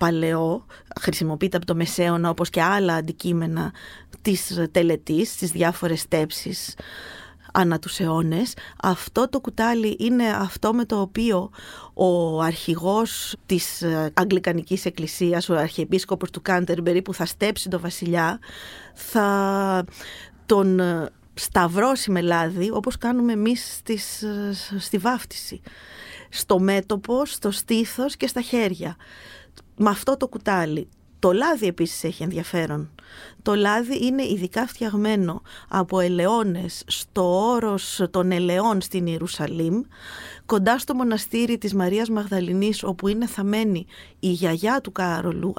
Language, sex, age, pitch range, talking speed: Greek, female, 30-49, 175-215 Hz, 120 wpm